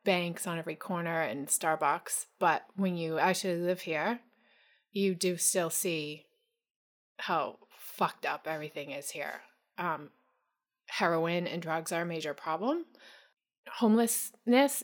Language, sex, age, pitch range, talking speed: English, female, 20-39, 175-255 Hz, 125 wpm